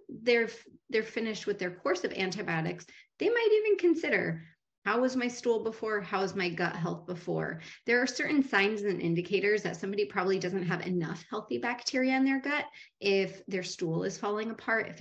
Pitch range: 180-230 Hz